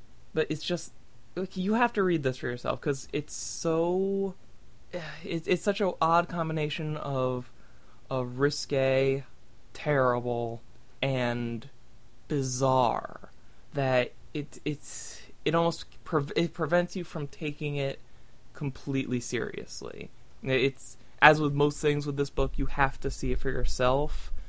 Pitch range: 125-165 Hz